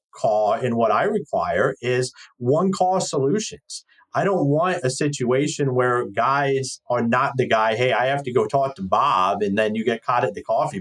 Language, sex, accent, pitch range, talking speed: English, male, American, 130-175 Hz, 195 wpm